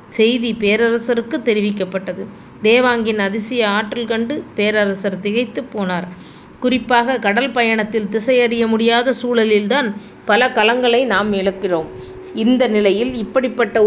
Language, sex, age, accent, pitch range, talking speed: Tamil, female, 30-49, native, 205-240 Hz, 100 wpm